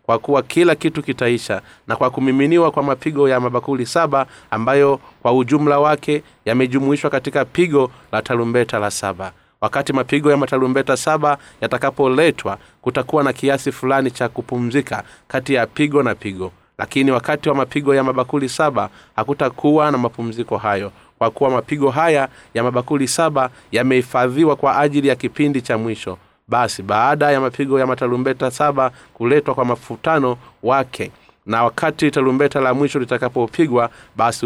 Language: Swahili